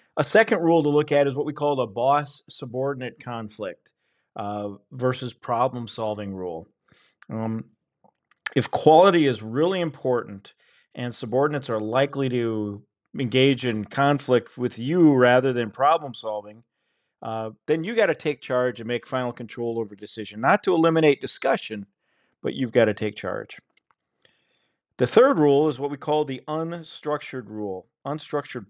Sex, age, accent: male, 40-59, American